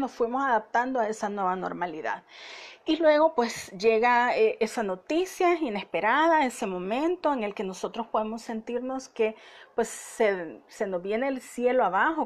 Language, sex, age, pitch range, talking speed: Spanish, female, 40-59, 210-270 Hz, 155 wpm